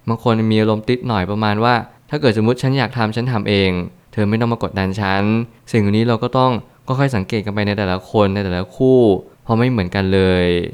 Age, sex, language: 20-39, male, Thai